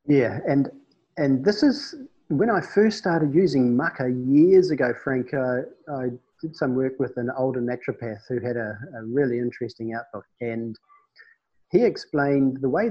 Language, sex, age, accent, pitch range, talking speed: English, male, 40-59, Australian, 115-145 Hz, 165 wpm